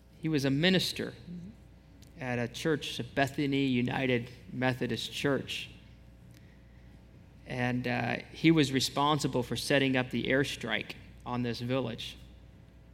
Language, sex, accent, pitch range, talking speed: English, male, American, 115-140 Hz, 110 wpm